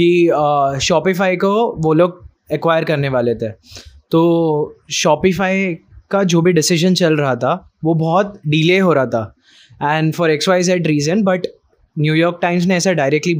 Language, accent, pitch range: Hindi, native, 150-175 Hz